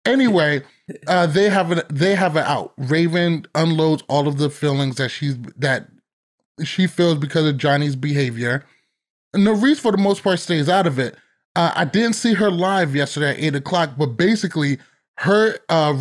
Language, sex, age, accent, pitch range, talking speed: English, male, 30-49, American, 135-180 Hz, 175 wpm